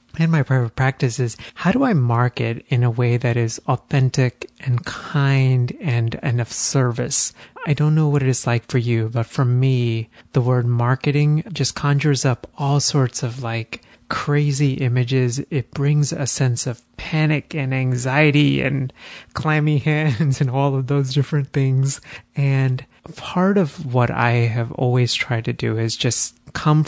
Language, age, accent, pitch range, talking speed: English, 30-49, American, 120-145 Hz, 165 wpm